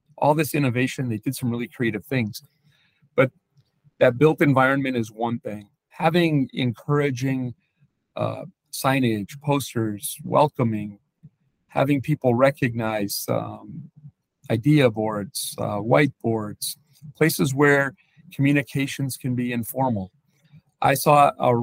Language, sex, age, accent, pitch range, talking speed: English, male, 40-59, American, 120-150 Hz, 110 wpm